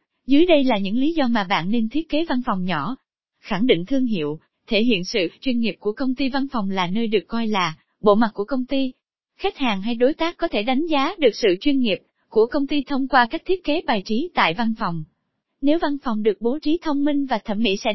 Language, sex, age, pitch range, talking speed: Vietnamese, female, 20-39, 210-295 Hz, 255 wpm